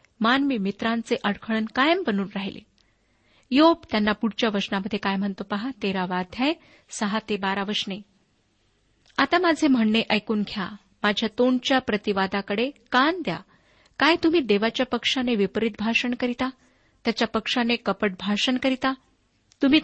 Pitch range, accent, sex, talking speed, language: 210-265 Hz, native, female, 125 wpm, Marathi